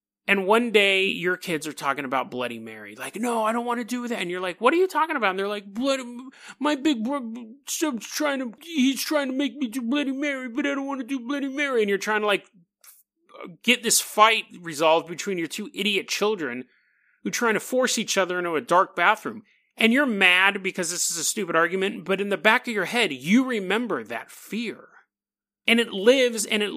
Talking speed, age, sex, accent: 220 wpm, 30-49, male, American